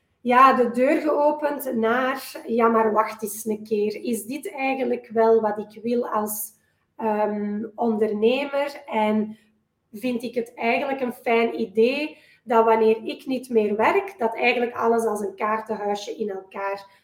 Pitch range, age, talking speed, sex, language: 215-250 Hz, 20-39, 150 wpm, female, Dutch